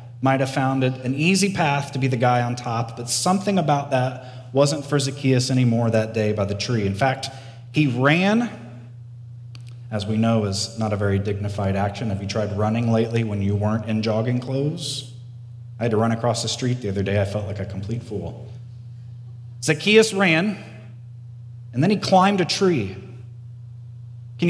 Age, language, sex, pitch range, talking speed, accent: 30-49, English, male, 115-140 Hz, 185 wpm, American